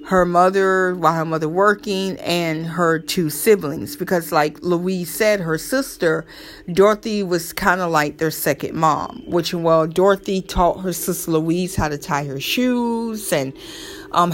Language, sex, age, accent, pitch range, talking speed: English, female, 40-59, American, 170-230 Hz, 160 wpm